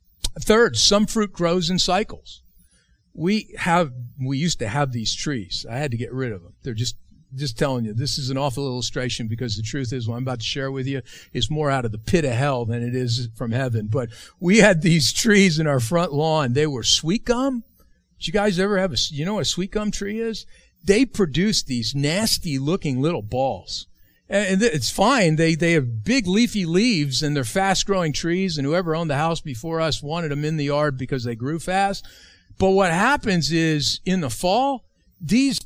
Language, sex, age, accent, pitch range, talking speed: English, male, 50-69, American, 135-205 Hz, 210 wpm